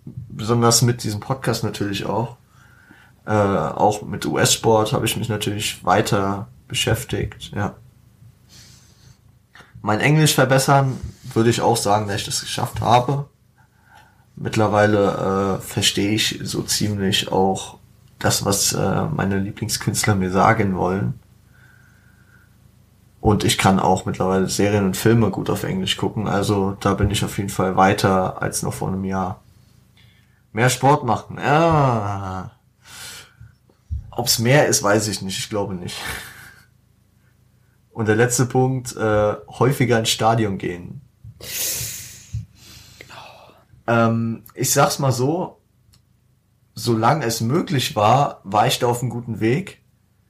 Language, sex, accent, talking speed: German, male, German, 130 wpm